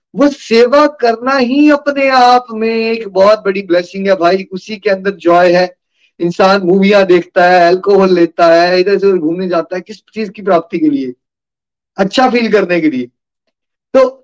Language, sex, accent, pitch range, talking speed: Hindi, male, native, 170-235 Hz, 175 wpm